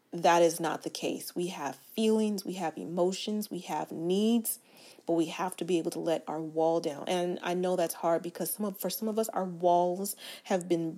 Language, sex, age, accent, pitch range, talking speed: English, female, 30-49, American, 175-210 Hz, 225 wpm